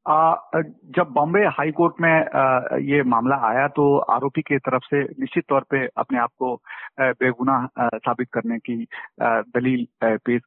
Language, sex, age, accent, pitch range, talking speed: Hindi, male, 50-69, native, 135-205 Hz, 150 wpm